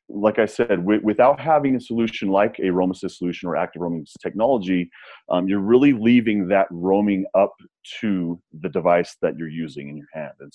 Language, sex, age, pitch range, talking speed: English, male, 30-49, 90-110 Hz, 180 wpm